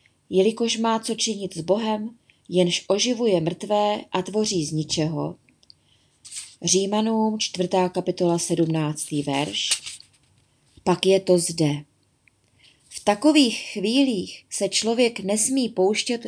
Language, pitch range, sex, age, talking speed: Czech, 175-230 Hz, female, 20-39, 105 wpm